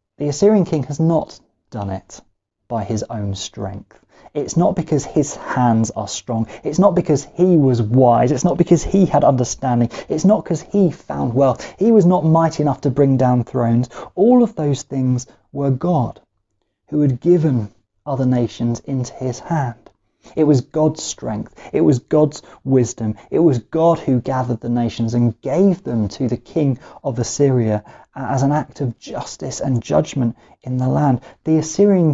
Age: 20-39